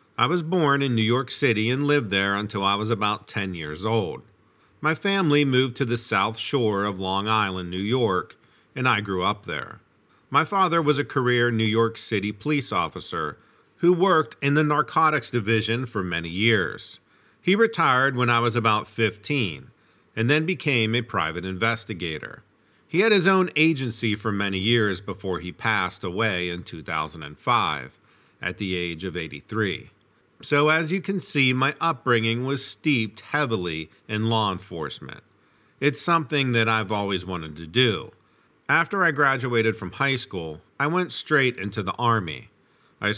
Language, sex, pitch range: English, male, 100-135 Hz